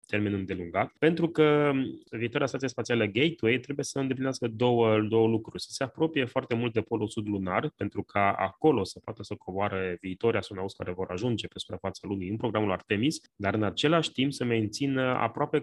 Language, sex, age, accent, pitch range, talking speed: Romanian, male, 20-39, native, 105-135 Hz, 185 wpm